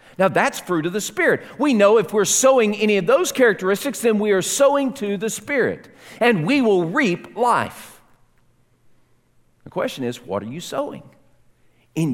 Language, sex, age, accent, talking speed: English, male, 50-69, American, 175 wpm